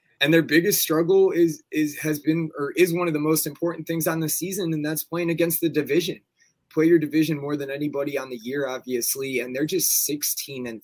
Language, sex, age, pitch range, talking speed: English, male, 20-39, 130-160 Hz, 220 wpm